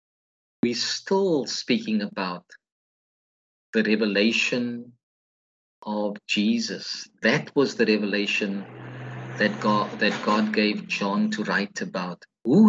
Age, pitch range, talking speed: 50-69, 100-145 Hz, 100 wpm